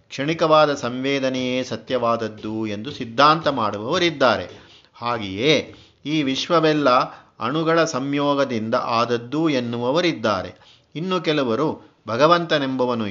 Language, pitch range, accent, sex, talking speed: Kannada, 120-150 Hz, native, male, 75 wpm